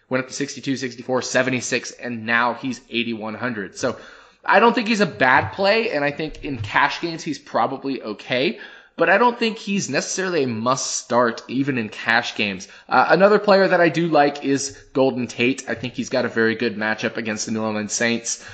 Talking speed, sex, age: 200 wpm, male, 20-39